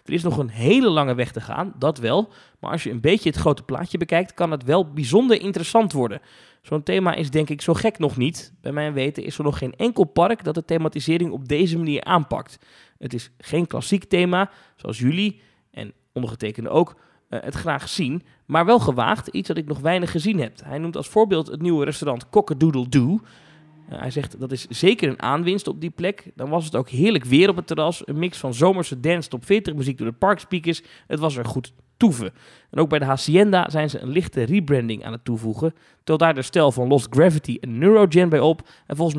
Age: 20-39